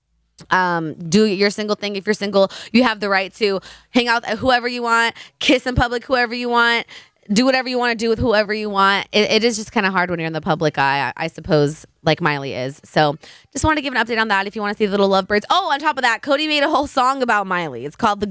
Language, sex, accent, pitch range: English, female, American, 200-270 Hz